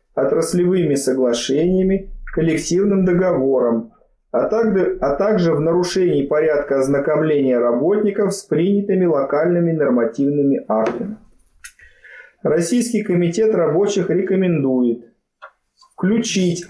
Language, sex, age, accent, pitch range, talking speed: Russian, male, 30-49, native, 140-195 Hz, 75 wpm